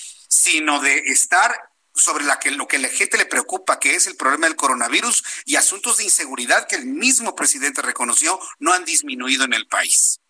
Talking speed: 185 wpm